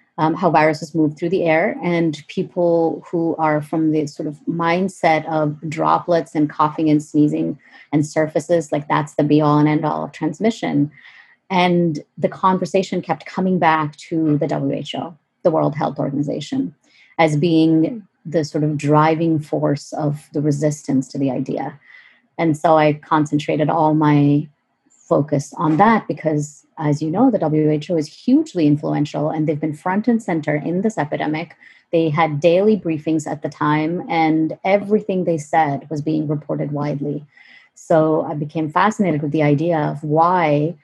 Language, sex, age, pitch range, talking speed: English, female, 30-49, 150-175 Hz, 165 wpm